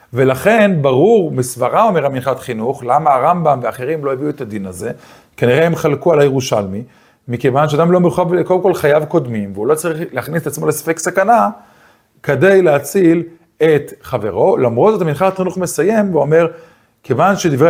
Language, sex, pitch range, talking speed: Hebrew, male, 125-170 Hz, 160 wpm